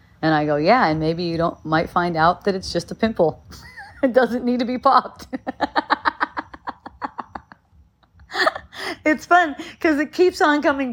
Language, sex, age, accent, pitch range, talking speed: English, female, 30-49, American, 170-270 Hz, 160 wpm